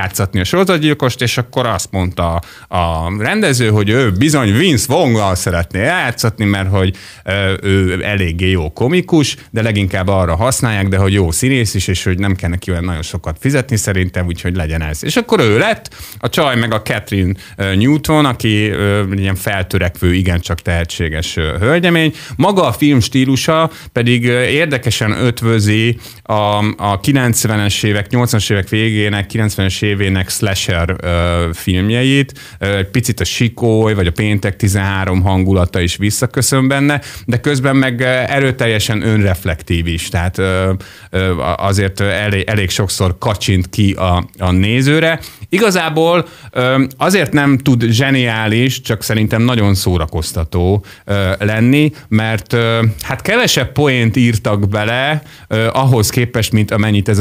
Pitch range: 95-125 Hz